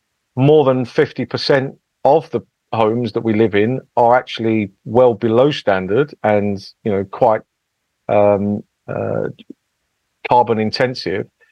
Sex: male